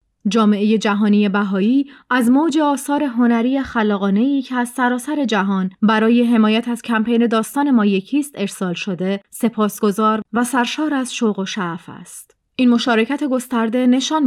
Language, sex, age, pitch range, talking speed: Persian, female, 30-49, 210-250 Hz, 140 wpm